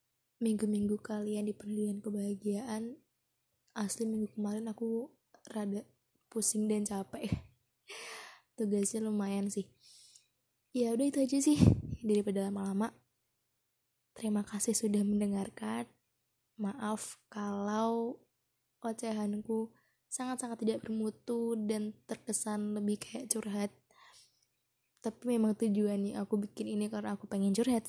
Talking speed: 105 wpm